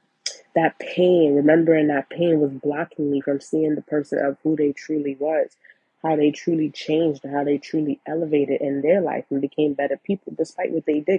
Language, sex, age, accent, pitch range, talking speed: English, female, 20-39, American, 155-190 Hz, 195 wpm